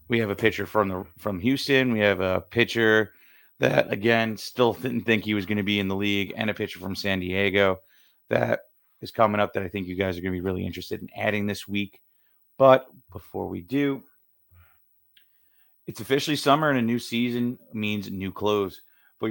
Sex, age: male, 30-49